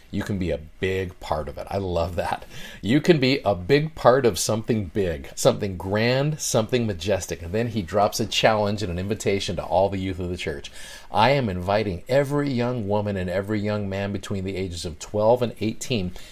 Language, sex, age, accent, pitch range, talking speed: English, male, 40-59, American, 95-125 Hz, 210 wpm